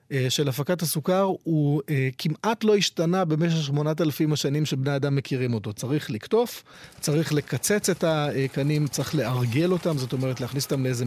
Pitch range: 130-165 Hz